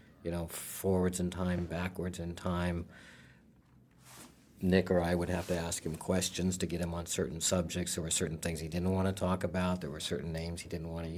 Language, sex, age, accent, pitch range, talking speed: English, male, 50-69, American, 85-105 Hz, 220 wpm